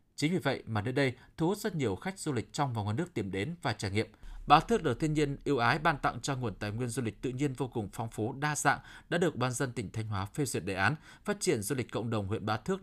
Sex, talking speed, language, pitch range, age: male, 305 wpm, Vietnamese, 115-150 Hz, 20-39